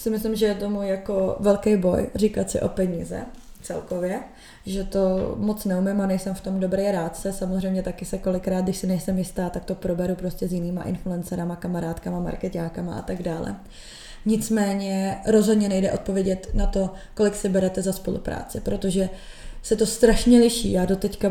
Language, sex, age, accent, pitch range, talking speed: Czech, female, 20-39, native, 190-205 Hz, 170 wpm